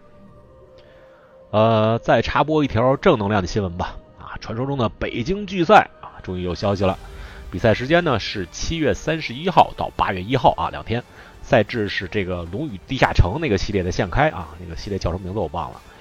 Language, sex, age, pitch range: Chinese, male, 30-49, 90-115 Hz